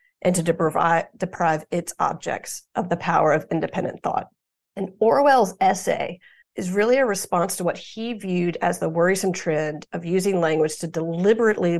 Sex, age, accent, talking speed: female, 40-59, American, 165 wpm